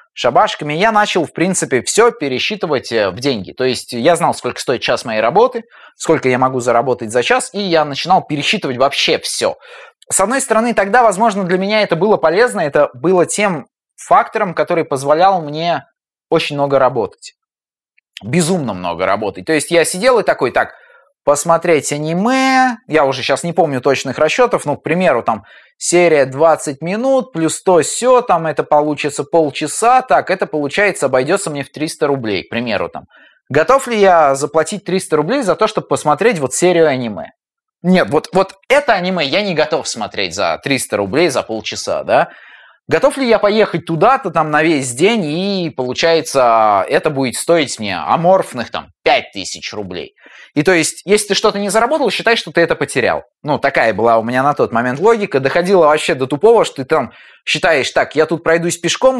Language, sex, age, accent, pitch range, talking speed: Russian, male, 20-39, native, 145-205 Hz, 180 wpm